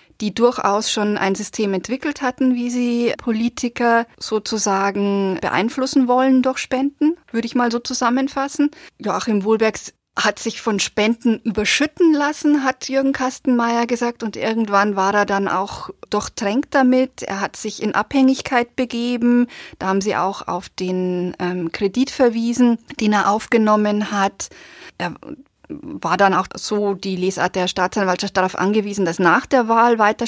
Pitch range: 195-240 Hz